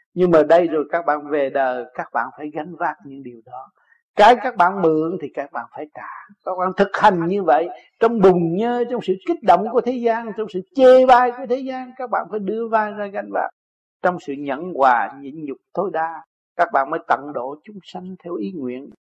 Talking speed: 230 wpm